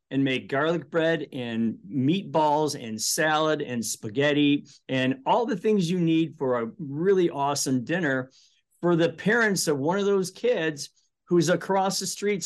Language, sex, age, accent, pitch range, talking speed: English, male, 50-69, American, 140-180 Hz, 160 wpm